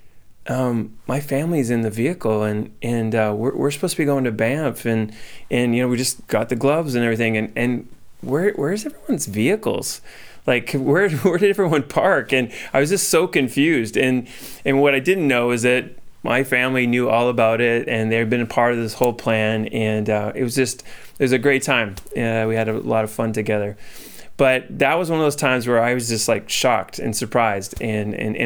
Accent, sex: American, male